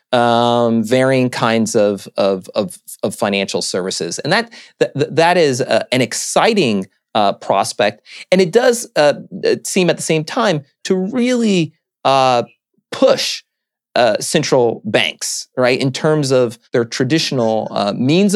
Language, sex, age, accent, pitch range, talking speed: English, male, 30-49, American, 115-160 Hz, 140 wpm